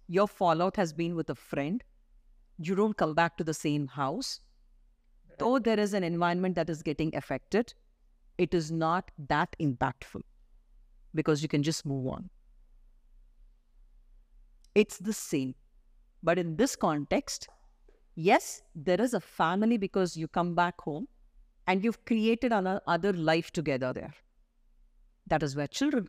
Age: 50-69